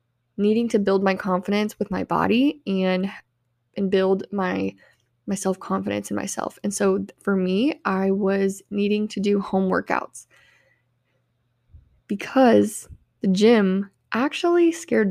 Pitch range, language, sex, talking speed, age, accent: 190-225 Hz, English, female, 125 wpm, 20-39, American